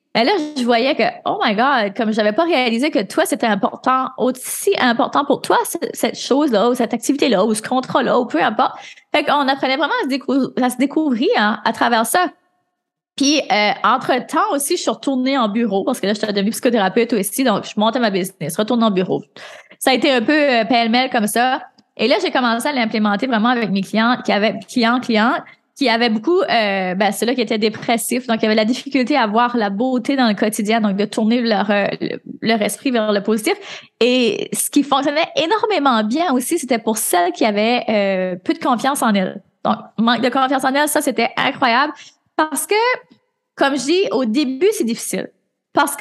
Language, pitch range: French, 220-290 Hz